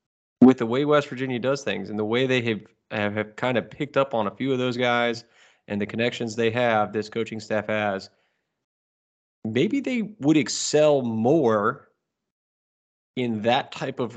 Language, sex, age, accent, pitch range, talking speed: English, male, 20-39, American, 105-120 Hz, 180 wpm